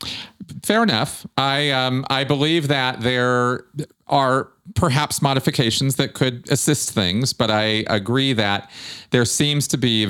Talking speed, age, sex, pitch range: 145 wpm, 40-59, male, 95-125 Hz